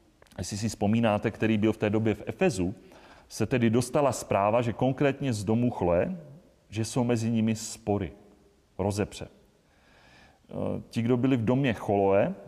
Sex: male